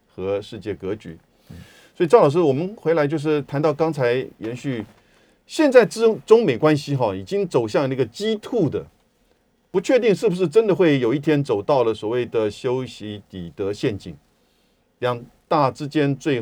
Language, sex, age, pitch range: Chinese, male, 50-69, 115-170 Hz